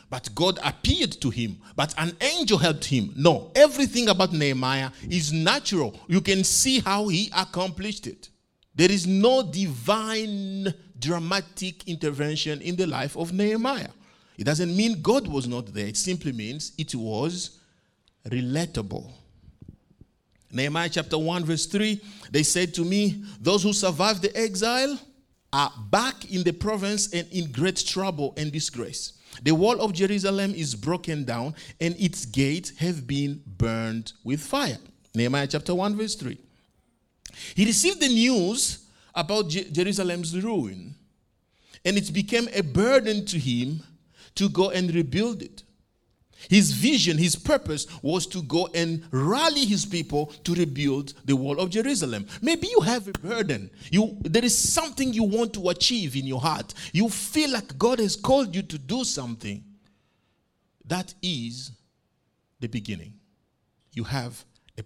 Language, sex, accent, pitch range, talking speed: English, male, Nigerian, 140-200 Hz, 150 wpm